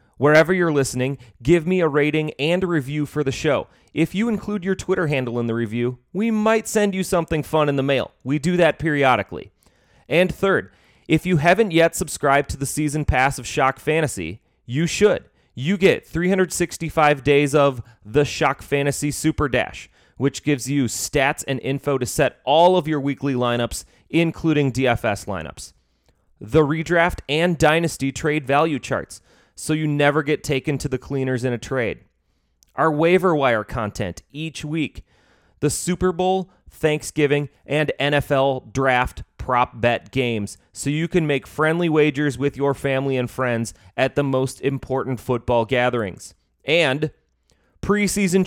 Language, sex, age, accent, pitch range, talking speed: English, male, 30-49, American, 125-165 Hz, 160 wpm